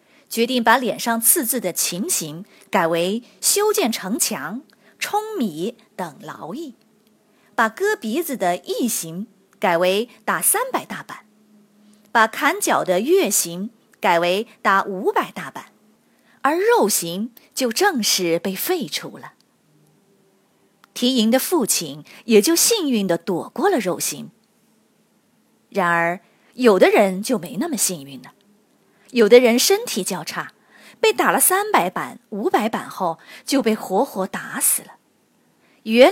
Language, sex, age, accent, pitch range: Chinese, female, 20-39, native, 195-285 Hz